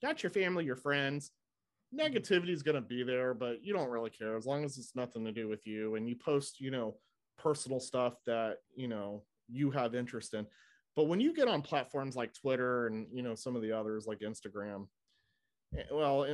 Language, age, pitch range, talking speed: English, 30-49, 115-145 Hz, 210 wpm